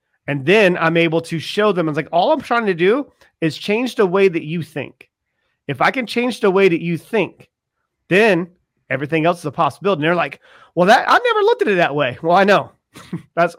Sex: male